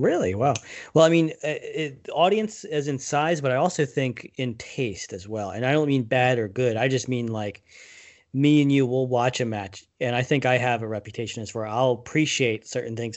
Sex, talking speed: male, 220 wpm